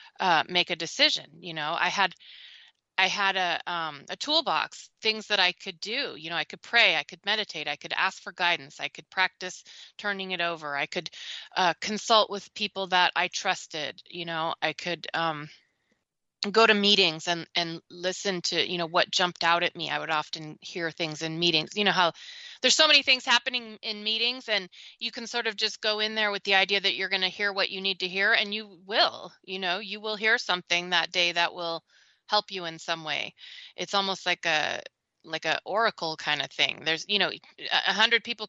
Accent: American